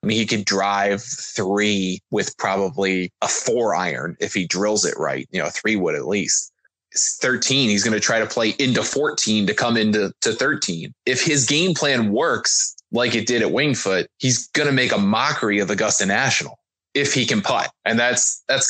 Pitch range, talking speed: 105-125 Hz, 200 wpm